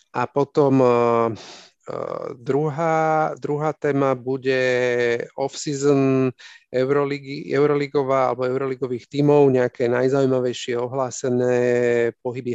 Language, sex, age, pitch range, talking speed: Slovak, male, 40-59, 125-155 Hz, 80 wpm